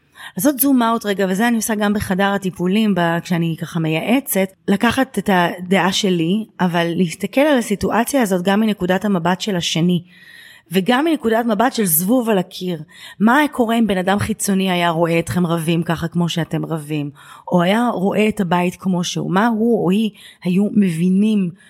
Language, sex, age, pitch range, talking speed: Hebrew, female, 30-49, 175-230 Hz, 170 wpm